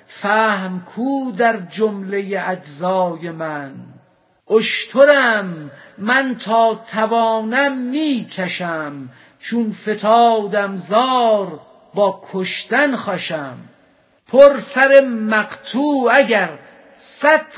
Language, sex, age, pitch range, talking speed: Persian, female, 50-69, 185-230 Hz, 70 wpm